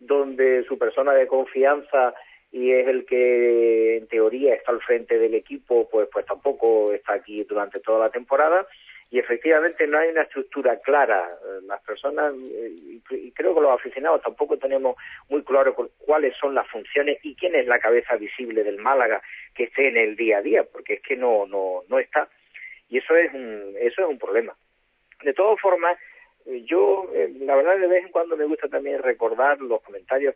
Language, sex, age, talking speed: Spanish, male, 50-69, 185 wpm